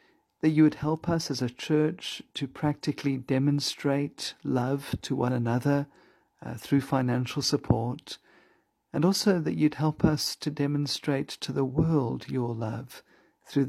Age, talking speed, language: 50-69, 145 wpm, English